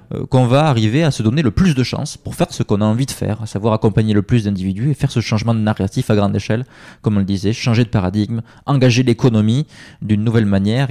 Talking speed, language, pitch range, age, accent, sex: 250 wpm, French, 105-140 Hz, 20-39, French, male